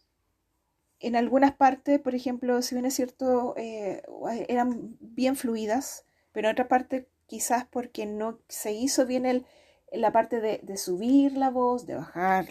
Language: Spanish